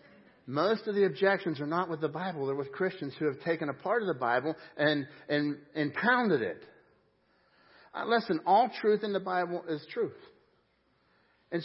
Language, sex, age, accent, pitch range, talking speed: English, male, 60-79, American, 140-185 Hz, 180 wpm